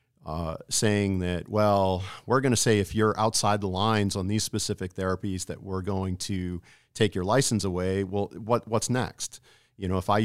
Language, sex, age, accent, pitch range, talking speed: English, male, 50-69, American, 95-115 Hz, 185 wpm